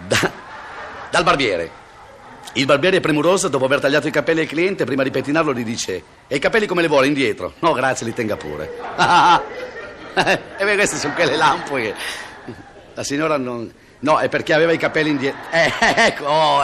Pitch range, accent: 115-190 Hz, native